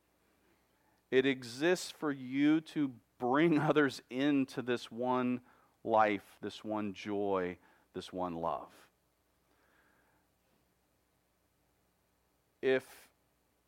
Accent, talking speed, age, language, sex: American, 80 wpm, 40-59, English, male